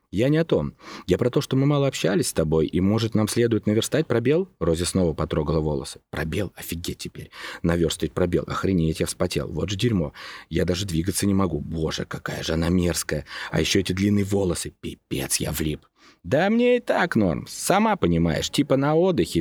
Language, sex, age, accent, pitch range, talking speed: Russian, male, 30-49, native, 85-115 Hz, 190 wpm